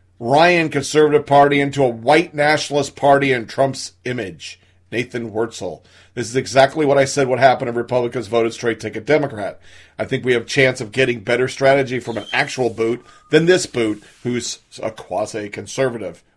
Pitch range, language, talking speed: 120-160 Hz, English, 170 wpm